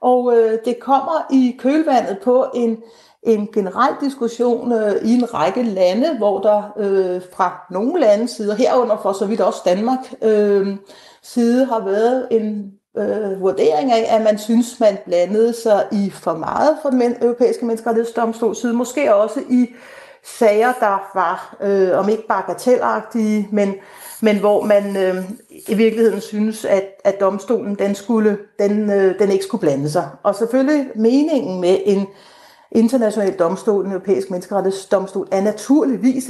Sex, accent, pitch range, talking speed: female, native, 195-235 Hz, 145 wpm